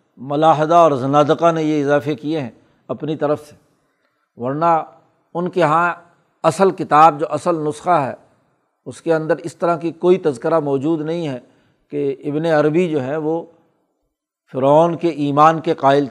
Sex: male